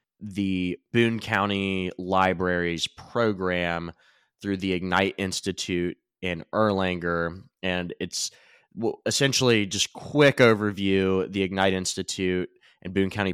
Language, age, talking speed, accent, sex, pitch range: English, 20-39, 105 wpm, American, male, 90-105 Hz